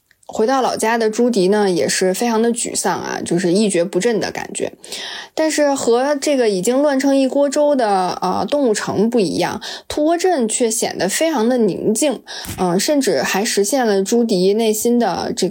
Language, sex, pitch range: Chinese, female, 200-265 Hz